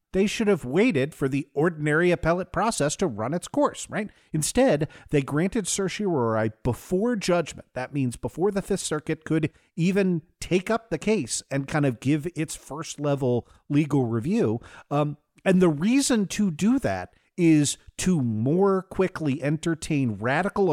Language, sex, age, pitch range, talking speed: English, male, 50-69, 125-175 Hz, 155 wpm